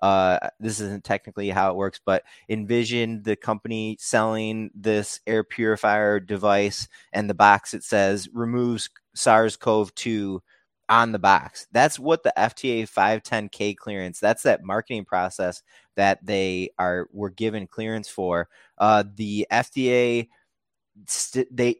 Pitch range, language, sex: 105-125 Hz, English, male